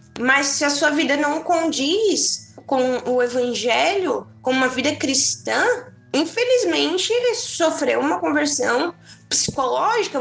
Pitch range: 235-350 Hz